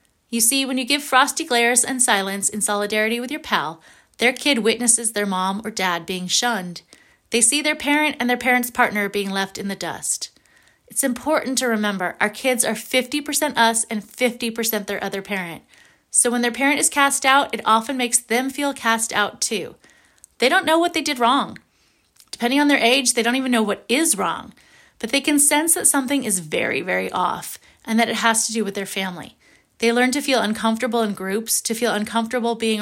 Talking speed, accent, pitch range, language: 205 wpm, American, 205-265 Hz, English